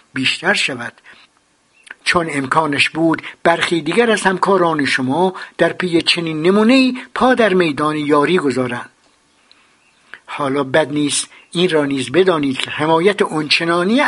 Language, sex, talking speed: Persian, male, 125 wpm